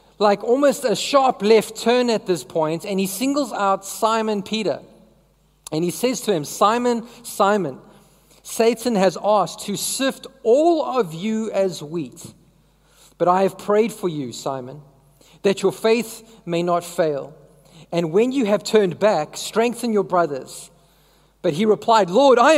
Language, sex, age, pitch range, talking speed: English, male, 40-59, 175-230 Hz, 155 wpm